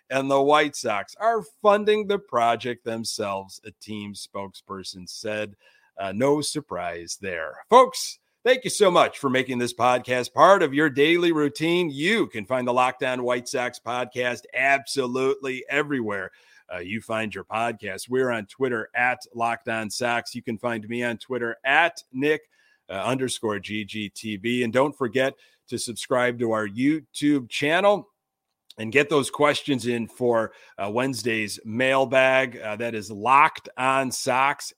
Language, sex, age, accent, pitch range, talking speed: English, male, 30-49, American, 110-140 Hz, 145 wpm